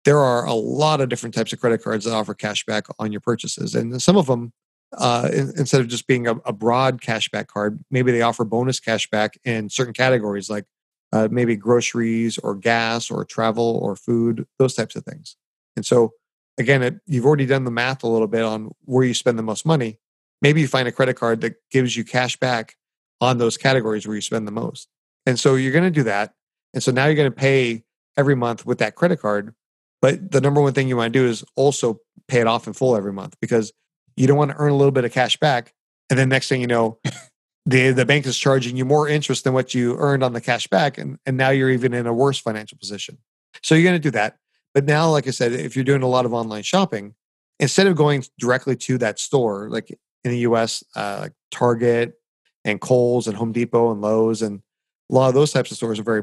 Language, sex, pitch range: English, male, 115-135 Hz